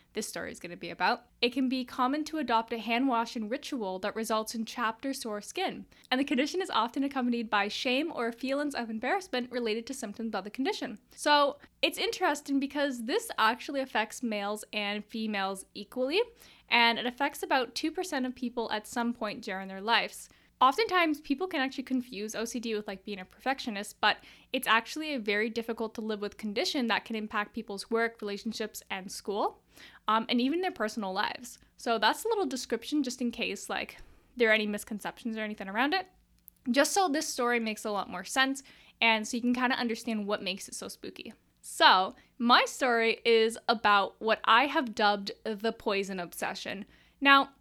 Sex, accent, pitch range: female, American, 215-265 Hz